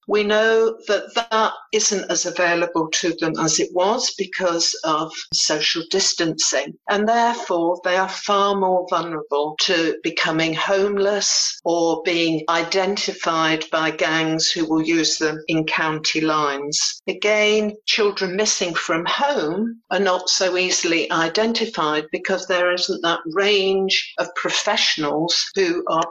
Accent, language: British, English